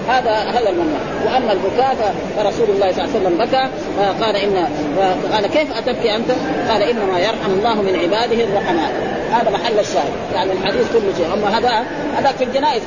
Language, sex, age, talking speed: Arabic, female, 40-59, 180 wpm